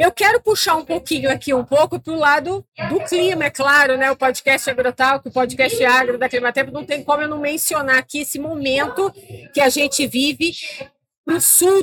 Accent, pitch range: Brazilian, 255-320 Hz